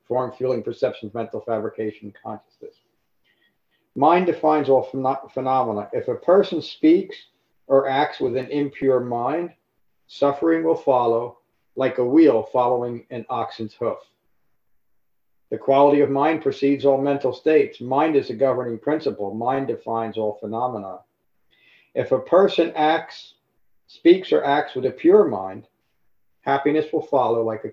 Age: 50-69